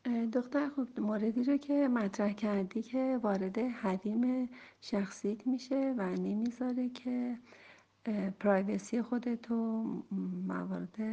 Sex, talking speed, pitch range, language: female, 95 wpm, 195-235 Hz, Persian